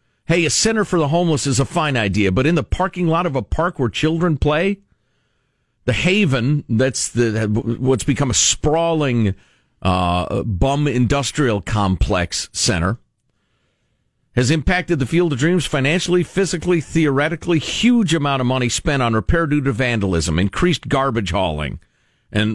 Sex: male